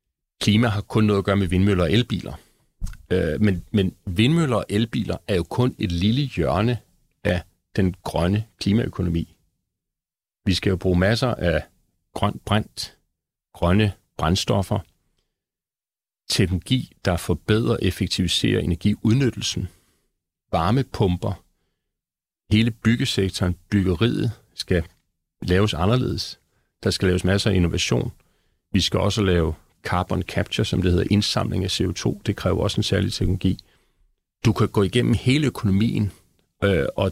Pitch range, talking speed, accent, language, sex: 90-110 Hz, 125 wpm, native, Danish, male